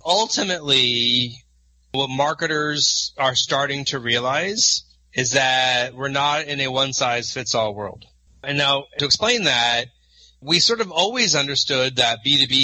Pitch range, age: 120-155 Hz, 30-49